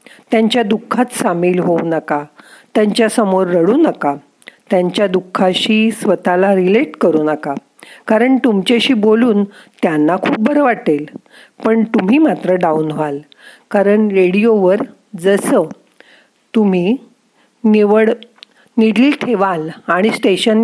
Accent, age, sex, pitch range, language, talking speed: native, 50-69, female, 180-235 Hz, Marathi, 105 wpm